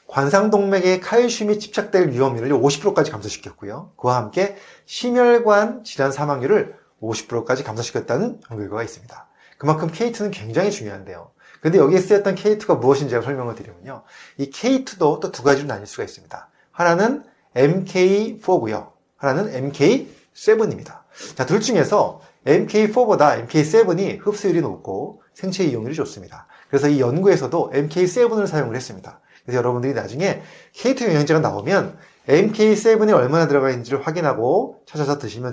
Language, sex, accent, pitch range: Korean, male, native, 125-200 Hz